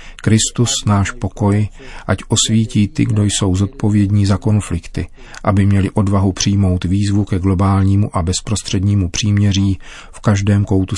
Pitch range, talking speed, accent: 95-105 Hz, 130 wpm, native